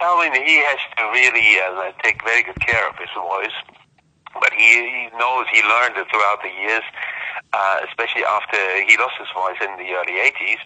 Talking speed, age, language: 205 wpm, 50-69, English